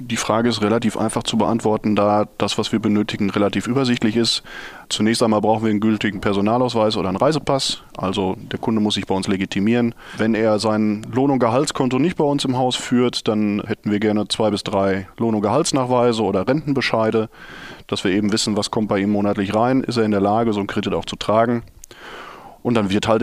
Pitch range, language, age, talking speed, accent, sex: 105-125 Hz, German, 20-39, 210 wpm, German, male